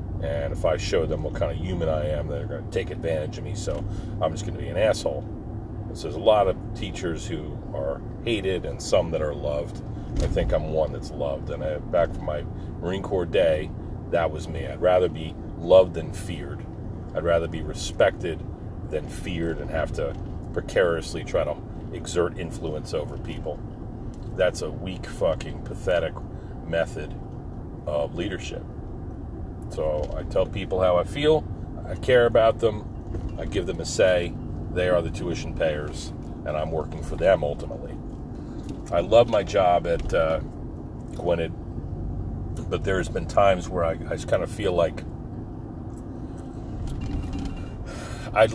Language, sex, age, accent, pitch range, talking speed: English, male, 40-59, American, 85-110 Hz, 165 wpm